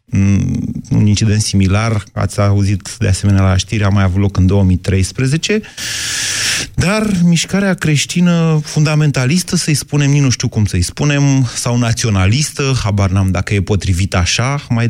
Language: Romanian